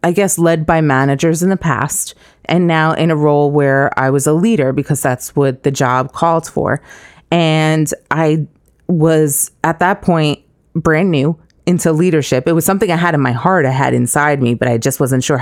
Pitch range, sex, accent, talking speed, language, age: 135-160 Hz, female, American, 200 wpm, English, 30-49